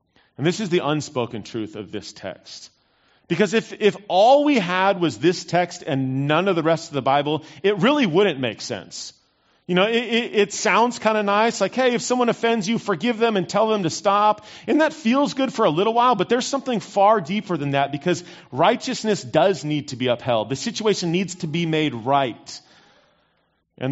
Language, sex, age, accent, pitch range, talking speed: English, male, 30-49, American, 125-200 Hz, 210 wpm